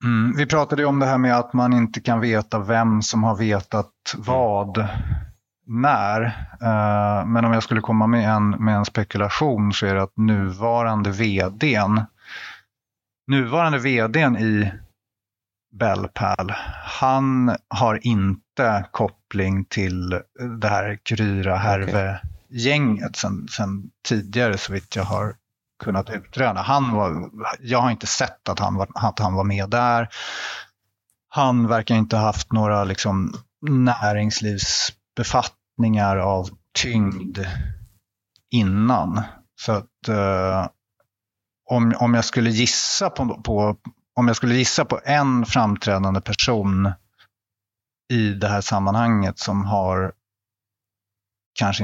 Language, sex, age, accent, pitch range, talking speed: Swedish, male, 30-49, native, 100-115 Hz, 120 wpm